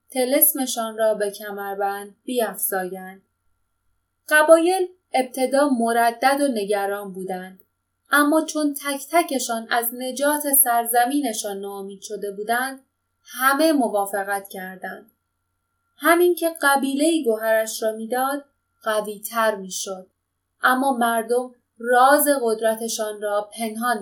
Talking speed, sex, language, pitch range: 95 wpm, female, Persian, 200-275 Hz